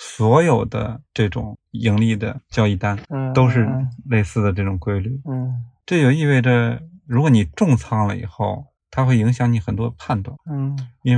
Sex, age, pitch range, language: male, 20-39, 105-125 Hz, Chinese